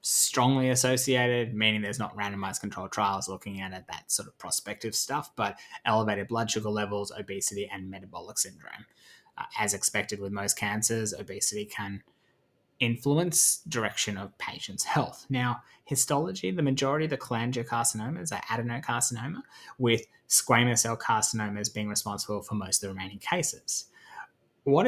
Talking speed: 145 wpm